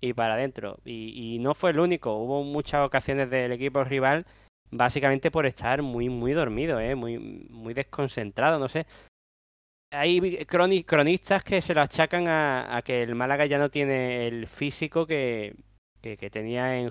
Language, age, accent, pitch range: Spanish, 20-39, Spanish, 115-140 Hz